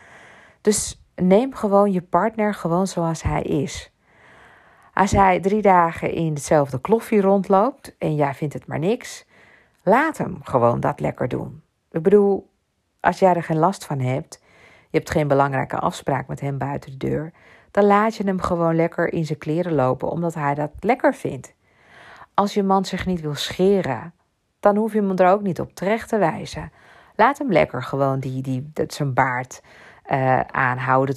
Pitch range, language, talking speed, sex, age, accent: 135-190 Hz, Dutch, 175 wpm, female, 50-69, Dutch